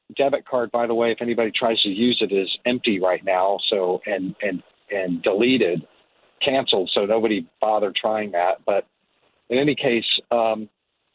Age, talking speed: 50-69, 165 wpm